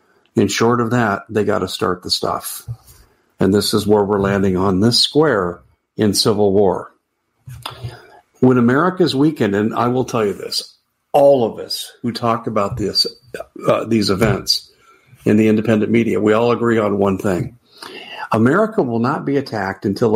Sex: male